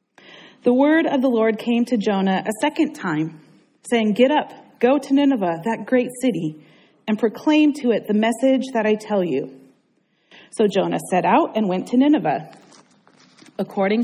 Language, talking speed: English, 165 wpm